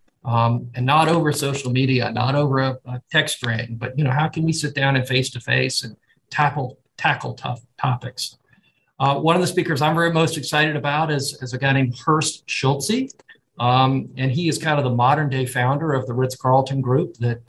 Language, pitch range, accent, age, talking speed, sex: English, 125-150 Hz, American, 50-69, 200 wpm, male